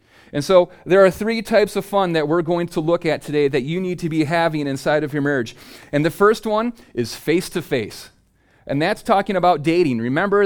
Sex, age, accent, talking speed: male, 30-49, American, 210 wpm